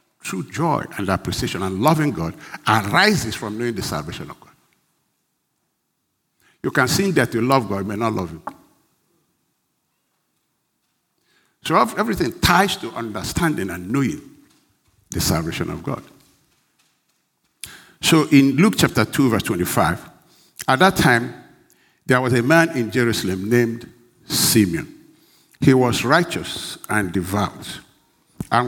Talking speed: 130 wpm